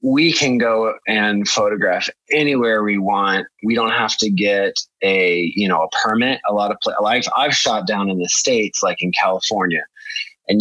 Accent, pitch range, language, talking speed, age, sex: American, 90-125 Hz, English, 185 wpm, 20-39, male